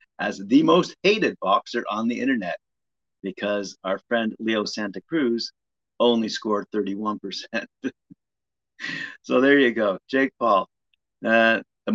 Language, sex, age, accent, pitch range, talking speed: English, male, 50-69, American, 110-135 Hz, 130 wpm